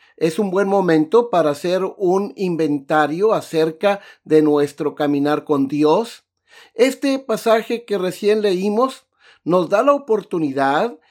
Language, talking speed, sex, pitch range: Spanish, 125 wpm, male, 155-230 Hz